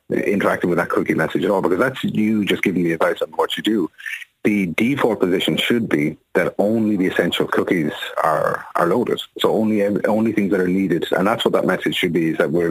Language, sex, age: English, male, 40-59